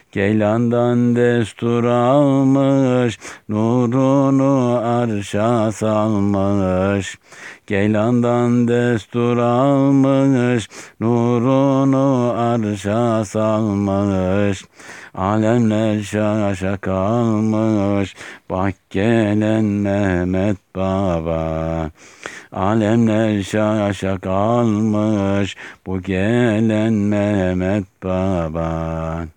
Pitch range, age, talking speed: 100-120 Hz, 60-79, 45 wpm